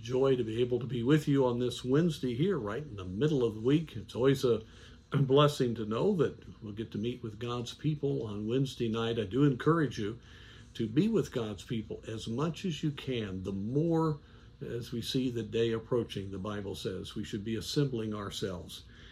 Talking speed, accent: 205 wpm, American